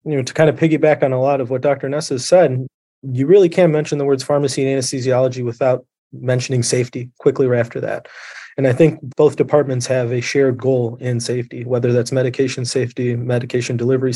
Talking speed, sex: 205 wpm, male